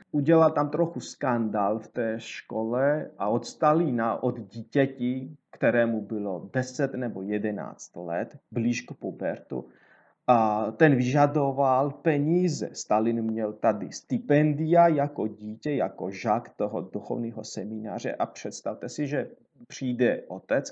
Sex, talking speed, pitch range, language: male, 120 wpm, 110-135 Hz, Slovak